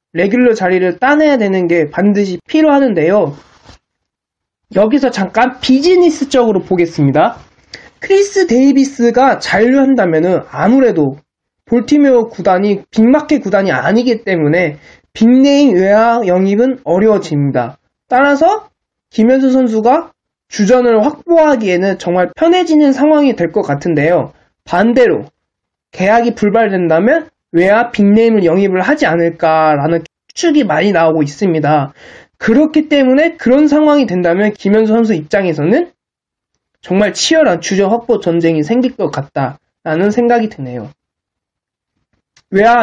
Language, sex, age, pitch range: Korean, male, 20-39, 170-255 Hz